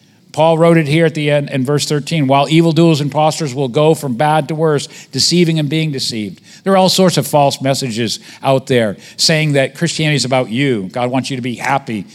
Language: English